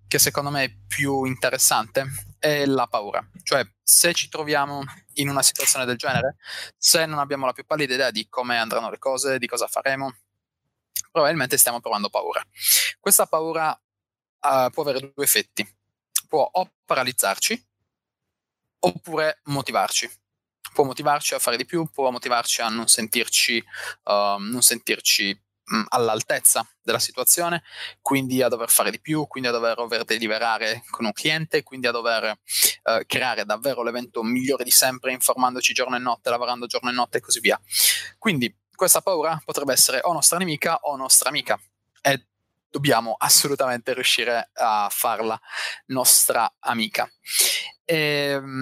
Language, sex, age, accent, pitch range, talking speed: Italian, male, 20-39, native, 120-150 Hz, 150 wpm